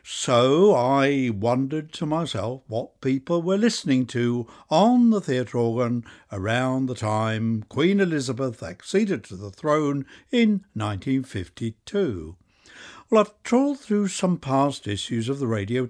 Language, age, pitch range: English, 60-79, 110-160 Hz